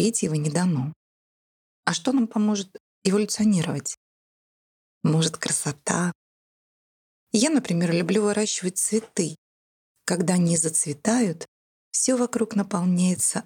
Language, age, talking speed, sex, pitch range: Russian, 20-39, 95 wpm, female, 160-210 Hz